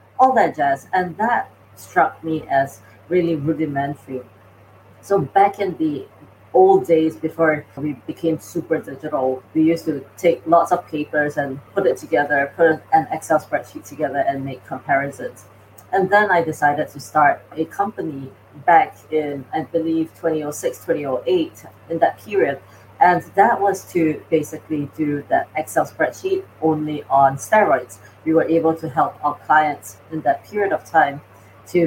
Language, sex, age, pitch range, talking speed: English, female, 30-49, 140-170 Hz, 155 wpm